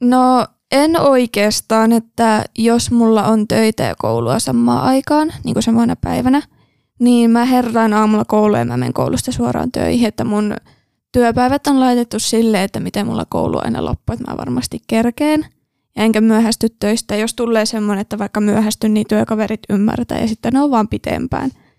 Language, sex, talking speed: Finnish, female, 170 wpm